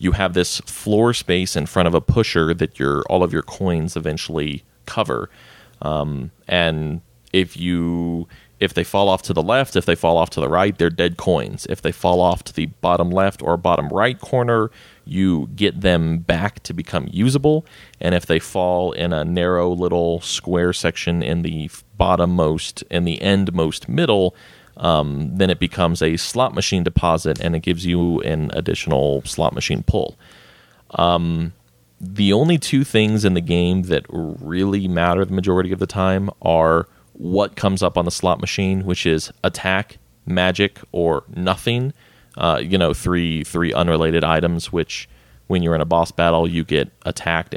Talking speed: 180 wpm